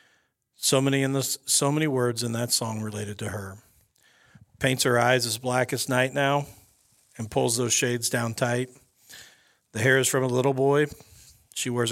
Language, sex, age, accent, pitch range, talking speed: English, male, 50-69, American, 110-130 Hz, 180 wpm